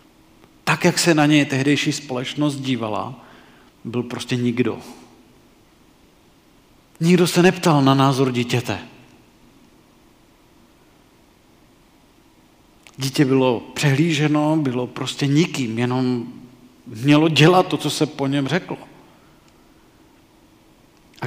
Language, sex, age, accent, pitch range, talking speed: Czech, male, 40-59, native, 125-150 Hz, 95 wpm